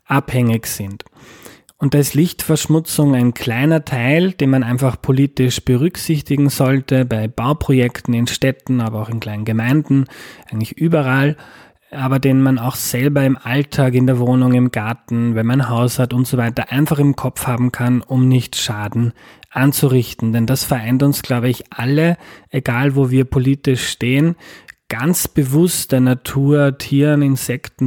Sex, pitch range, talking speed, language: male, 120-145 Hz, 155 wpm, German